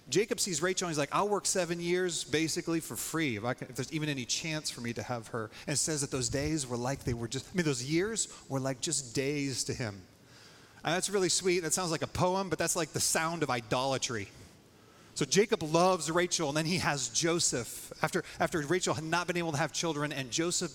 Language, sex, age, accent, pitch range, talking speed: English, male, 30-49, American, 130-165 Hz, 235 wpm